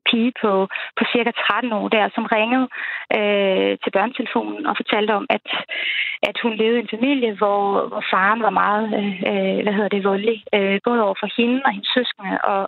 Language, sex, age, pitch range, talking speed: Danish, female, 20-39, 210-245 Hz, 195 wpm